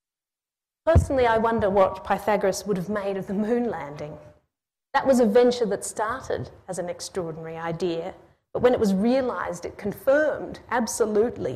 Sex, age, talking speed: female, 40-59, 155 wpm